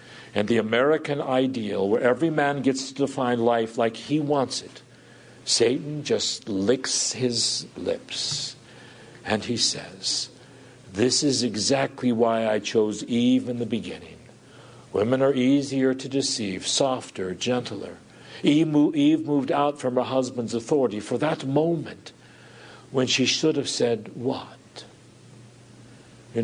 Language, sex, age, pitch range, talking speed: English, male, 60-79, 120-155 Hz, 130 wpm